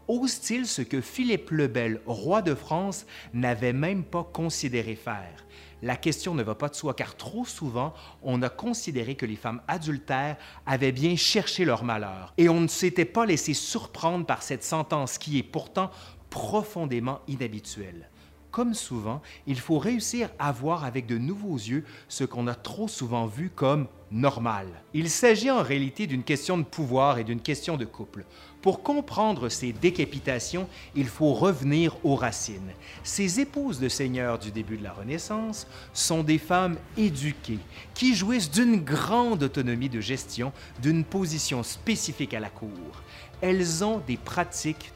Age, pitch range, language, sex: 30-49, 115-170 Hz, French, male